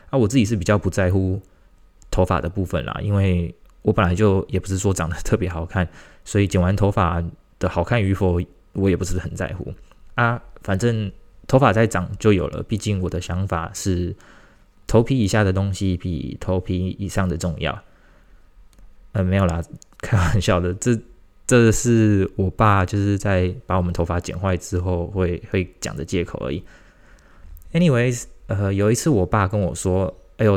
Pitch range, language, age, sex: 90-110 Hz, Chinese, 20-39, male